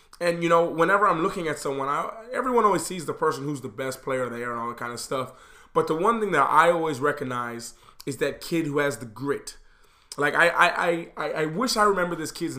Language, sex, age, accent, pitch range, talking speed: English, male, 20-39, American, 135-175 Hz, 240 wpm